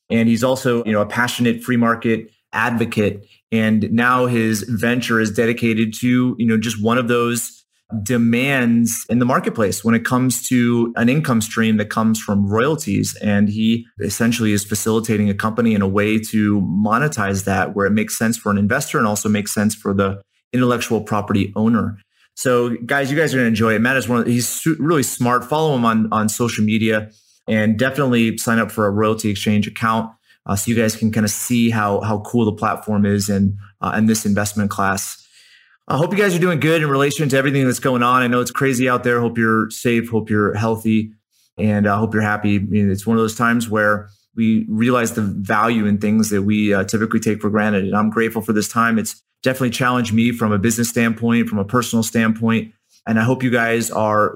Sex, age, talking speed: male, 30-49, 215 wpm